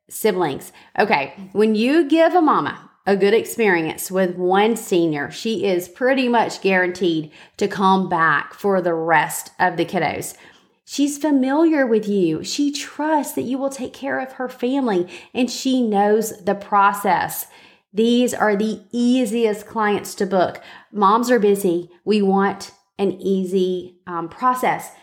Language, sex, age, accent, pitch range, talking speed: English, female, 30-49, American, 190-245 Hz, 150 wpm